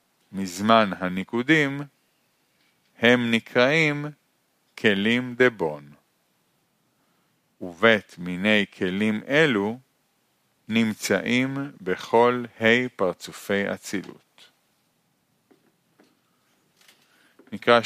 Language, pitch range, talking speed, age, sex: Hebrew, 100-135 Hz, 55 wpm, 40-59, male